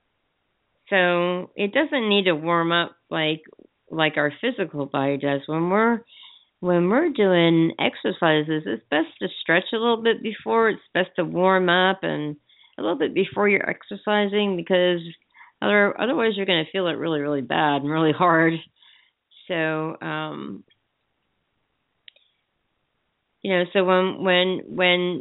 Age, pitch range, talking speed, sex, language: 50-69, 165-205 Hz, 145 wpm, female, English